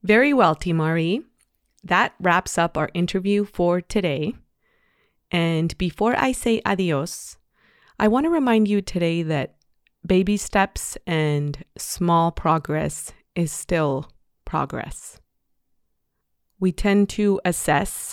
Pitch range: 155-200 Hz